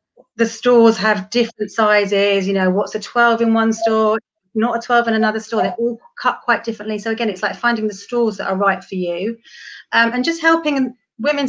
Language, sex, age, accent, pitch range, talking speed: English, female, 40-59, British, 205-255 Hz, 215 wpm